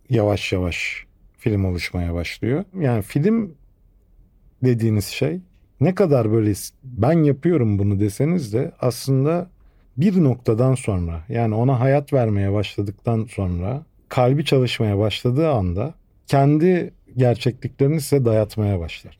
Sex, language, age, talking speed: male, Turkish, 50-69, 115 wpm